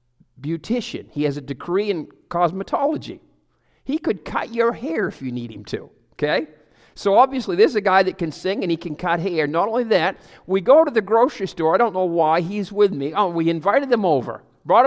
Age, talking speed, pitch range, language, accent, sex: 50-69, 215 wpm, 140-190 Hz, English, American, male